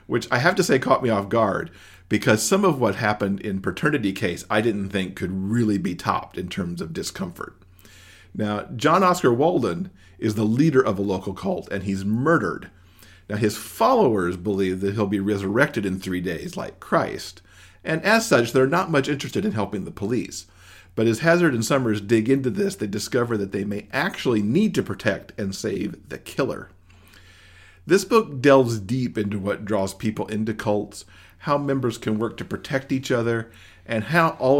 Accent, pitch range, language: American, 95-135 Hz, English